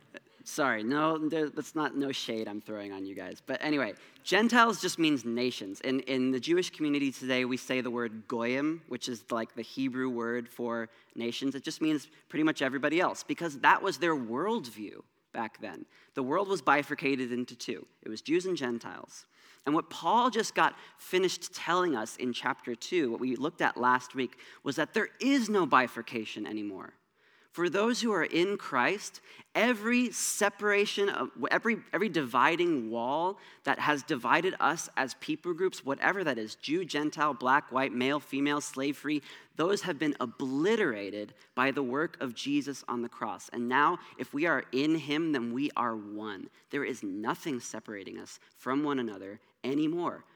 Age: 20-39